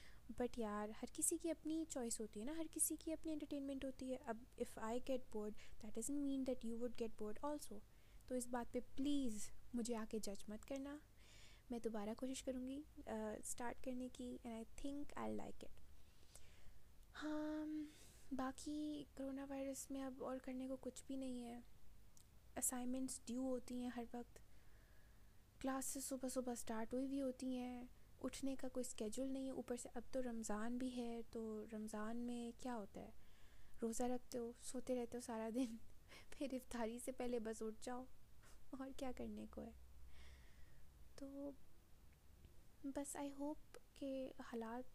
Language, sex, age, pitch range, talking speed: Urdu, female, 20-39, 225-265 Hz, 145 wpm